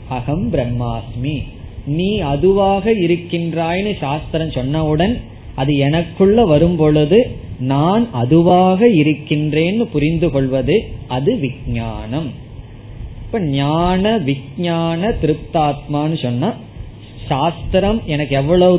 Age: 20-39